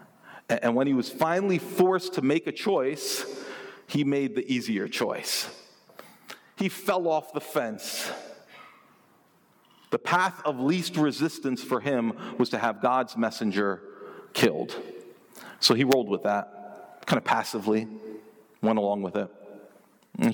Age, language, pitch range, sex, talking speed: 40-59, English, 105-145 Hz, male, 135 wpm